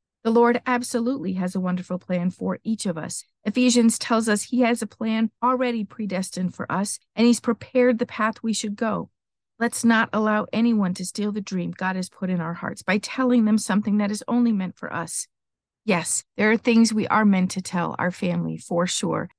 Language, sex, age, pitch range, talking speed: English, female, 40-59, 185-235 Hz, 205 wpm